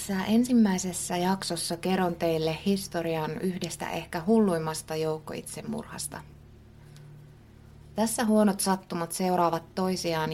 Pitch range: 155-190 Hz